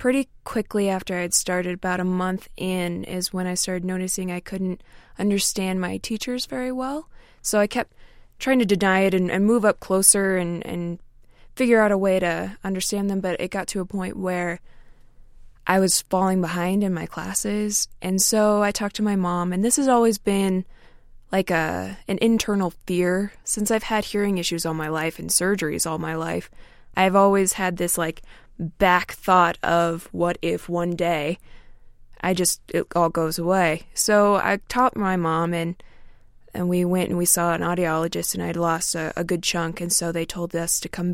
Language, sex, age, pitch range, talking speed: English, female, 20-39, 175-205 Hz, 195 wpm